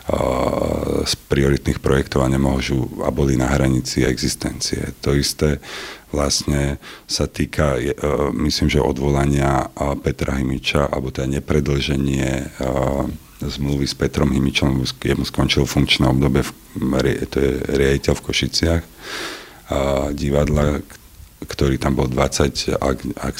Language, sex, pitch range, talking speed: Slovak, male, 70-75 Hz, 110 wpm